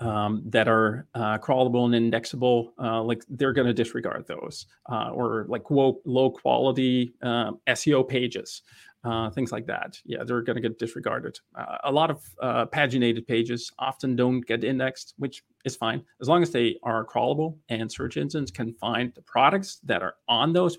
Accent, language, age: American, English, 30-49